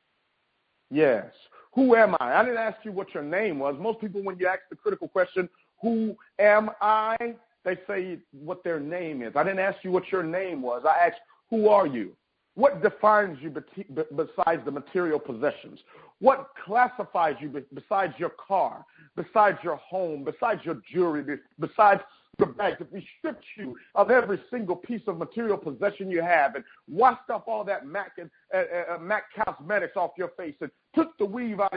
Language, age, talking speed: English, 50-69, 180 wpm